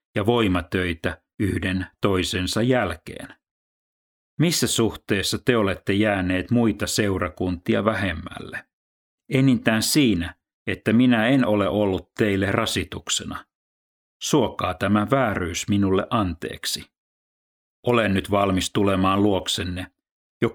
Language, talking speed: Finnish, 95 wpm